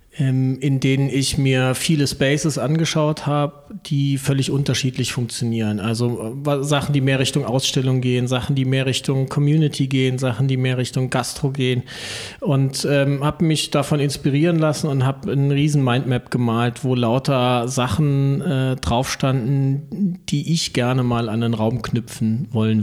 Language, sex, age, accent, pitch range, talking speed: German, male, 40-59, German, 125-140 Hz, 150 wpm